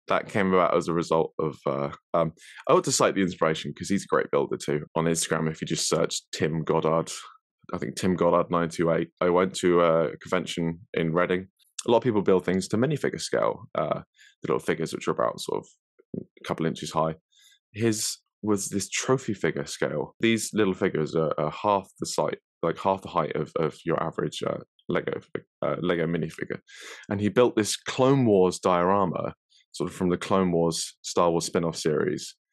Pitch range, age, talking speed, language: 85-105 Hz, 20-39, 195 wpm, English